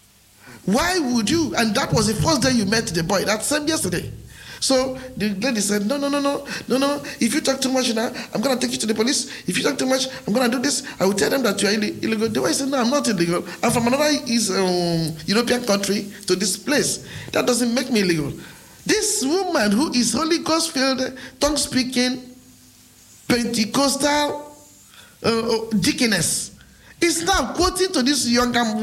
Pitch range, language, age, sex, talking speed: 205-285 Hz, English, 50-69, male, 210 wpm